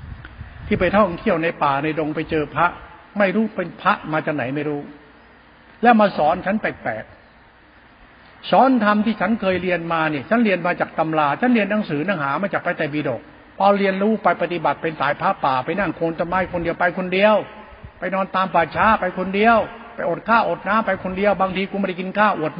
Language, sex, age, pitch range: Thai, male, 70-89, 165-210 Hz